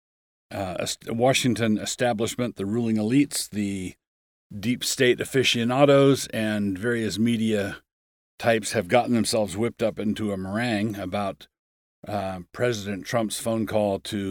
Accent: American